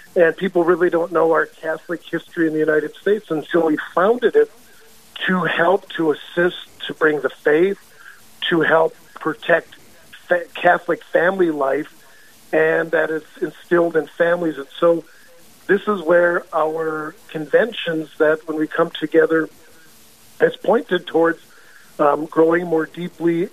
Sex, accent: male, American